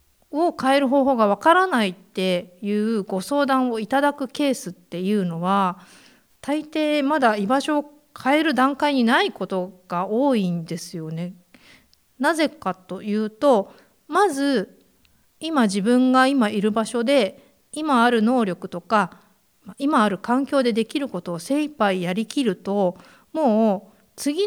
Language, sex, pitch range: Japanese, female, 195-275 Hz